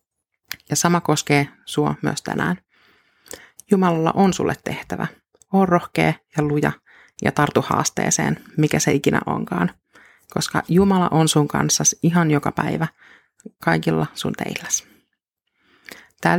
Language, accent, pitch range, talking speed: Finnish, native, 145-175 Hz, 120 wpm